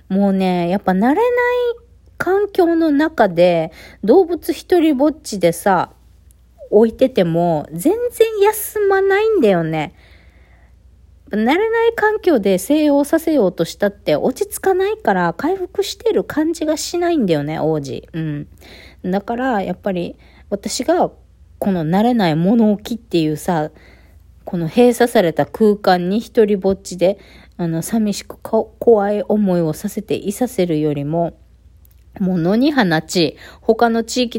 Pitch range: 165-265 Hz